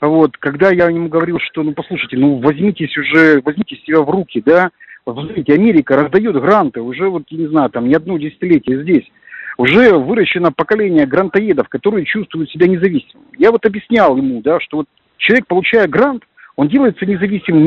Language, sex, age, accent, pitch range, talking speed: Russian, male, 50-69, native, 145-200 Hz, 175 wpm